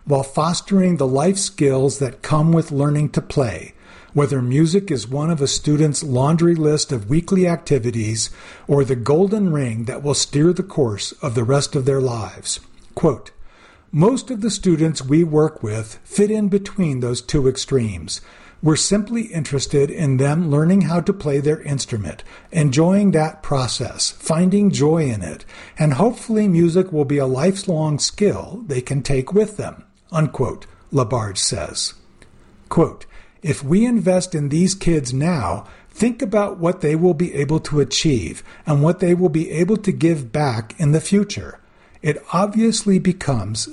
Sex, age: male, 50-69